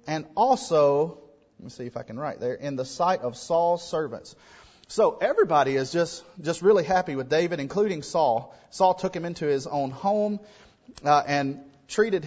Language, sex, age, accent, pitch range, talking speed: English, male, 30-49, American, 140-185 Hz, 180 wpm